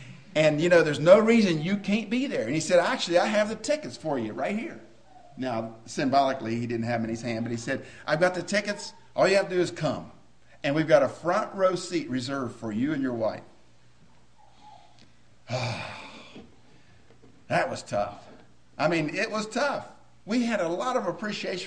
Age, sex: 50-69, male